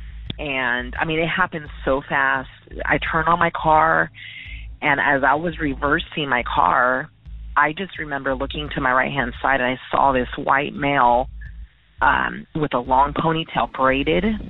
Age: 30-49